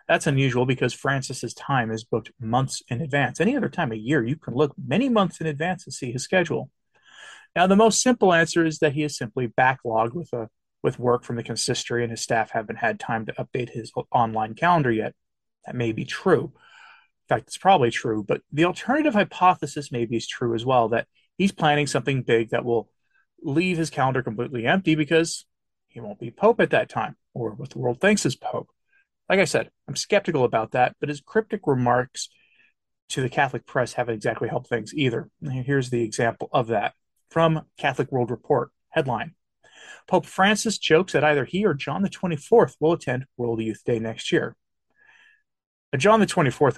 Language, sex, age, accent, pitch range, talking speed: English, male, 30-49, American, 120-165 Hz, 190 wpm